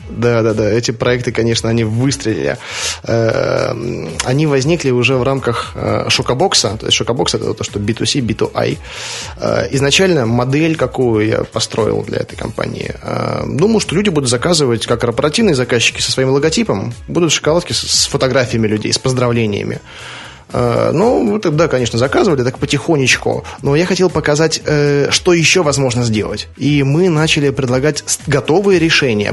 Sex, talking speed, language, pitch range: male, 135 wpm, Russian, 115-145 Hz